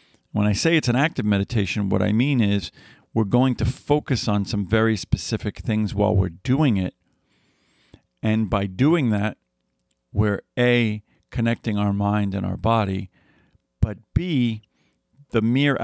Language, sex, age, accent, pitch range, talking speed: English, male, 50-69, American, 100-120 Hz, 150 wpm